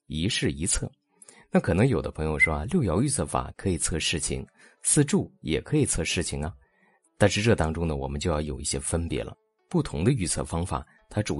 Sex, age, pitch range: male, 30-49, 75-105 Hz